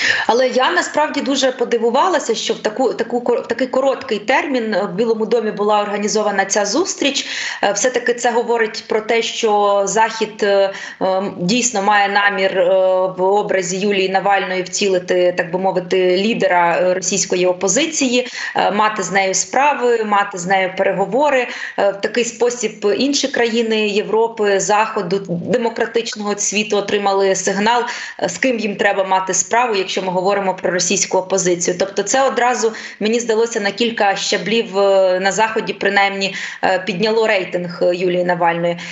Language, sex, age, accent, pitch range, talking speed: Ukrainian, female, 20-39, native, 195-240 Hz, 135 wpm